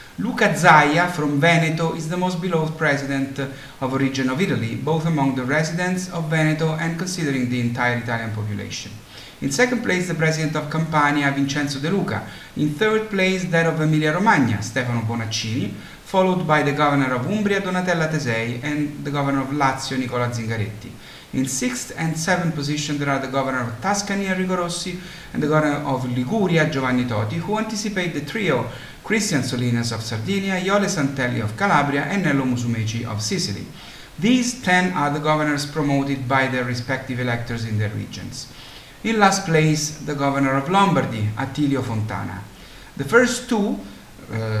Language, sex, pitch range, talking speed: English, male, 125-180 Hz, 165 wpm